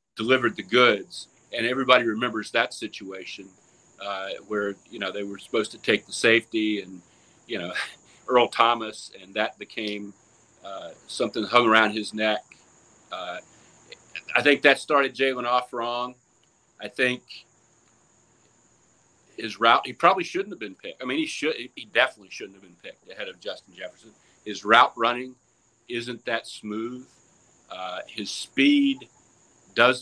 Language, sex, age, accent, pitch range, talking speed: English, male, 40-59, American, 105-135 Hz, 150 wpm